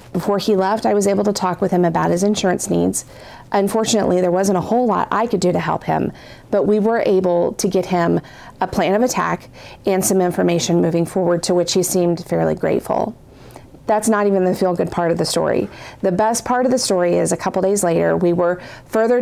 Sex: female